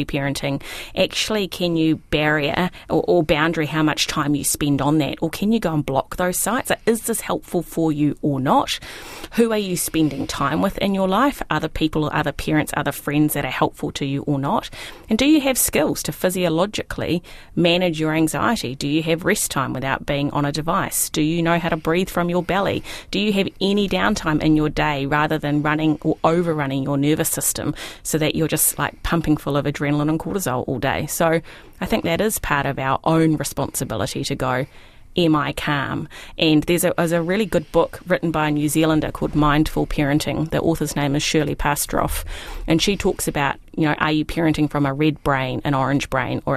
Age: 30-49